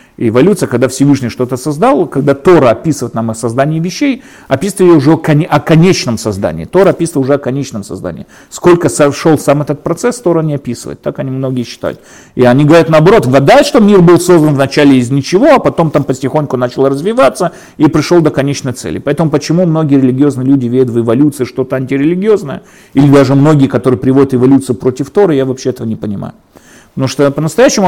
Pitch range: 130-180 Hz